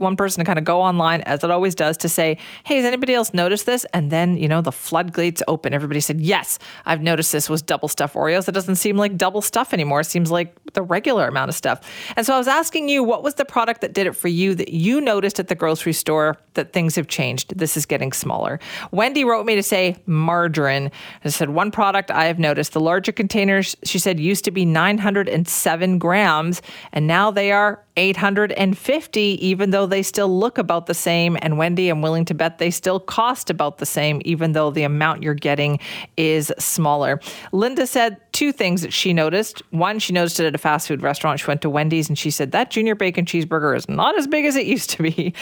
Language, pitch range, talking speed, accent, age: English, 160-205 Hz, 230 wpm, American, 40-59